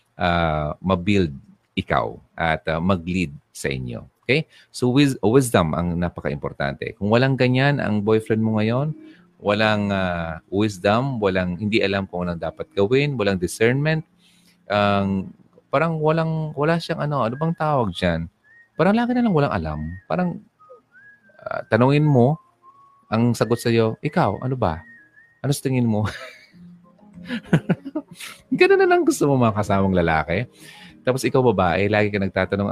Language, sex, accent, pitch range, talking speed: Filipino, male, native, 95-145 Hz, 140 wpm